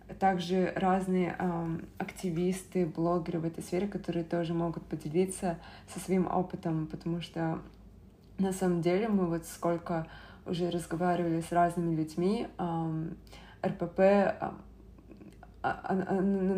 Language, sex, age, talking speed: Russian, female, 20-39, 120 wpm